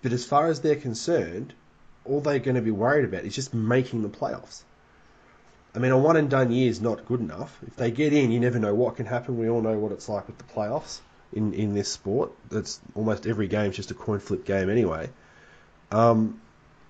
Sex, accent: male, Australian